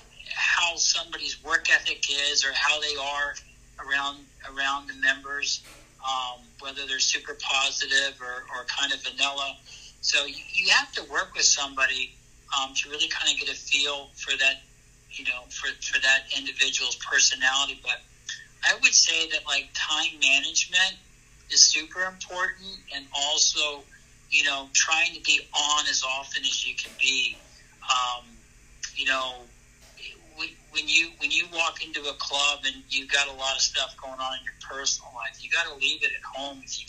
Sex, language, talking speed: male, English, 170 wpm